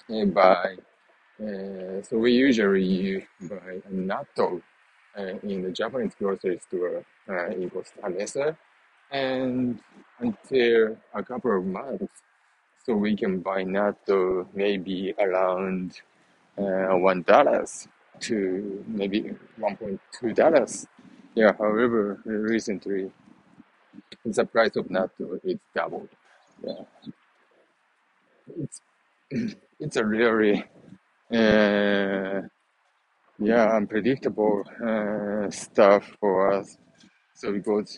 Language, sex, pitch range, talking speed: English, male, 95-110 Hz, 100 wpm